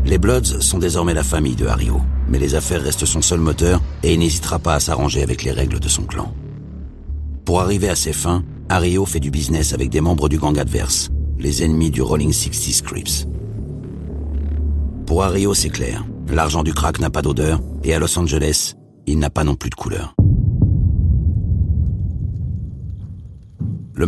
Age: 60-79